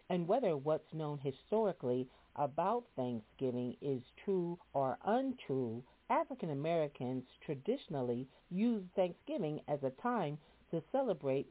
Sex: female